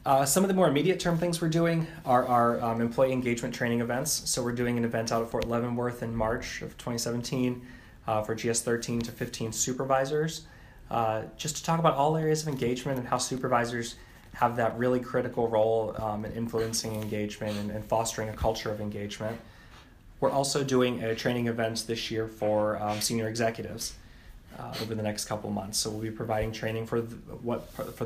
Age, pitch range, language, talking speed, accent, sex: 20-39, 110-125 Hz, English, 190 wpm, American, male